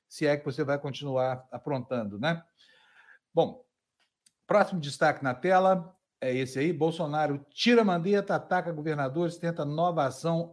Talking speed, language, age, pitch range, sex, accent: 135 wpm, Portuguese, 60-79, 140-175 Hz, male, Brazilian